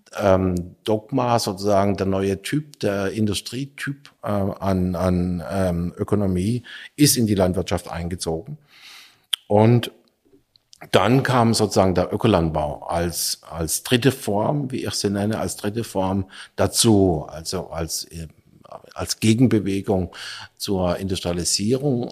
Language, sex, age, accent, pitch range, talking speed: German, male, 50-69, German, 90-110 Hz, 105 wpm